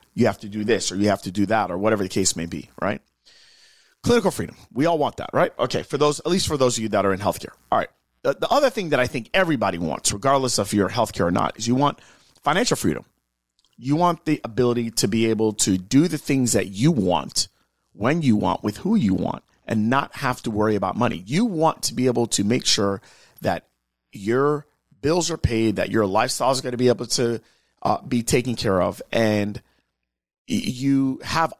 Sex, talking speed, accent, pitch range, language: male, 220 wpm, American, 105-145 Hz, English